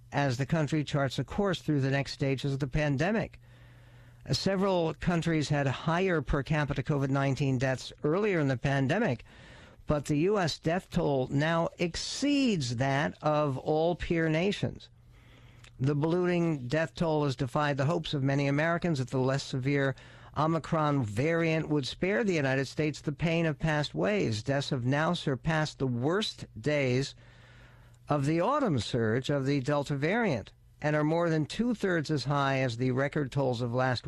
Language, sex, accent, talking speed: English, male, American, 165 wpm